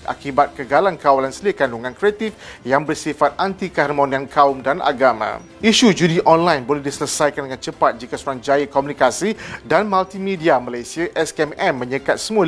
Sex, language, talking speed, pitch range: male, Malay, 135 wpm, 140-185 Hz